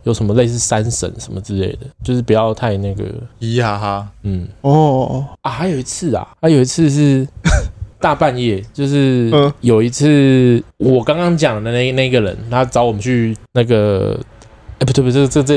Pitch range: 105-135 Hz